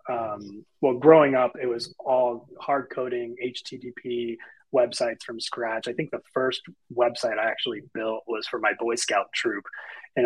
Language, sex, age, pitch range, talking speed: English, male, 30-49, 120-145 Hz, 165 wpm